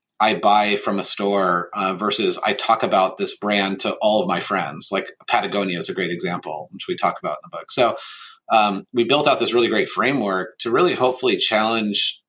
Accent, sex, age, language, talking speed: American, male, 30-49, English, 210 wpm